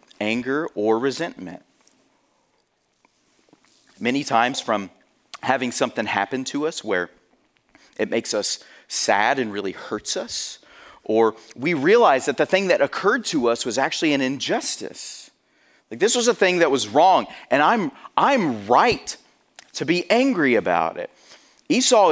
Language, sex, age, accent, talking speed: English, male, 30-49, American, 140 wpm